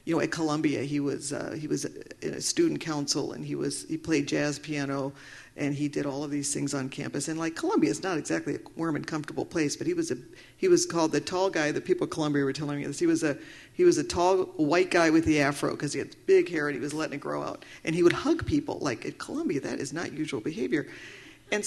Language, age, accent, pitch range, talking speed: English, 50-69, American, 145-210 Hz, 265 wpm